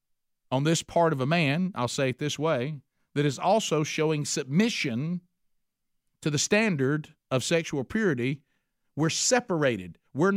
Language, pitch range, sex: English, 120-170 Hz, male